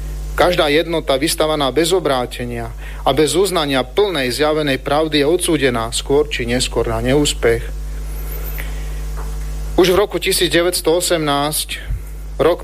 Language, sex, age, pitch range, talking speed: Slovak, male, 40-59, 130-165 Hz, 110 wpm